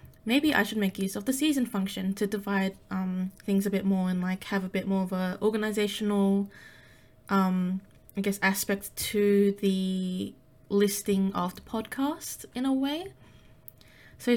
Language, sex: English, female